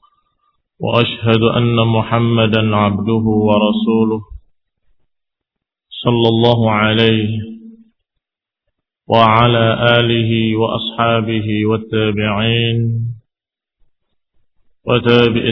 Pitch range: 110-120 Hz